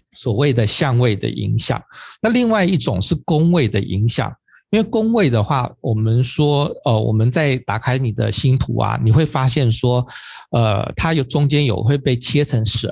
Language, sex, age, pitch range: Chinese, male, 50-69, 115-145 Hz